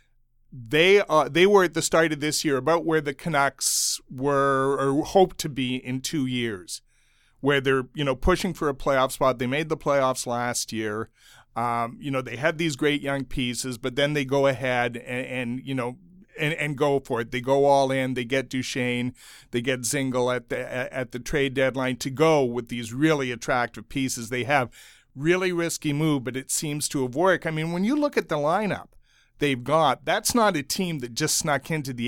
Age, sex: 40-59, male